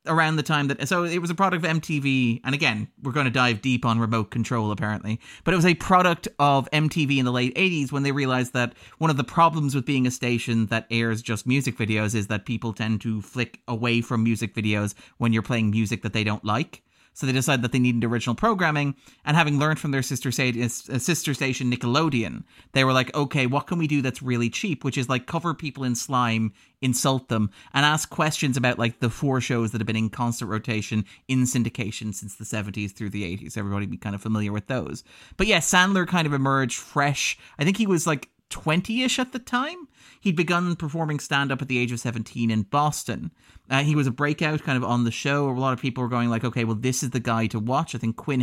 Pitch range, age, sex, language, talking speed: 115-150 Hz, 30-49, male, English, 235 wpm